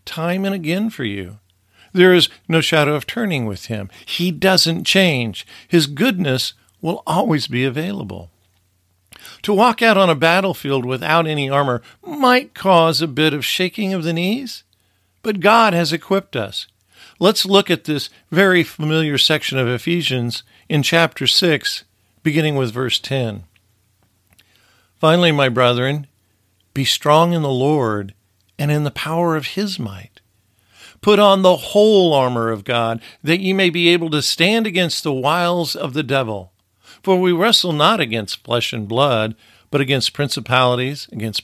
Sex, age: male, 50-69